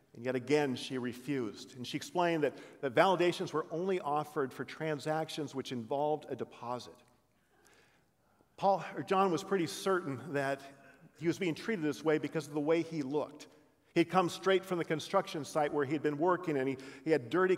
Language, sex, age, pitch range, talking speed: English, male, 50-69, 140-170 Hz, 190 wpm